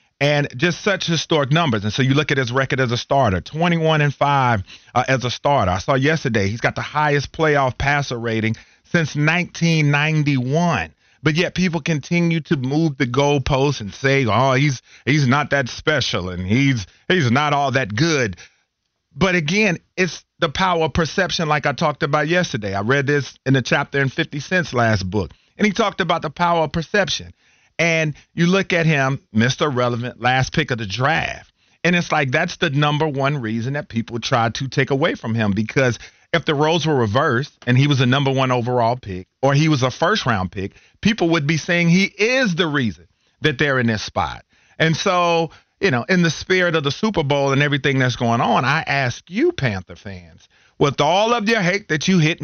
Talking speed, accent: 205 wpm, American